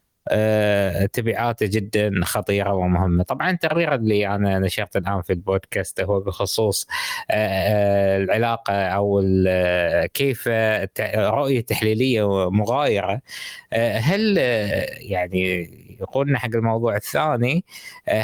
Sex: male